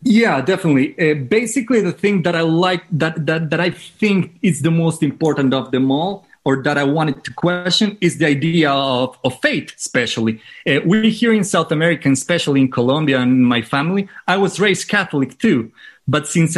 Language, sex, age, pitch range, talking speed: English, male, 30-49, 140-190 Hz, 190 wpm